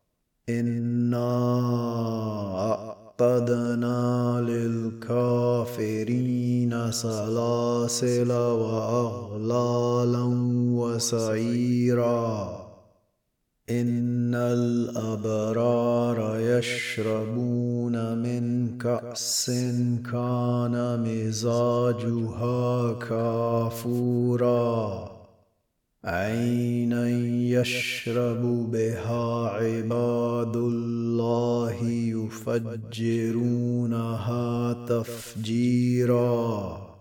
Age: 30-49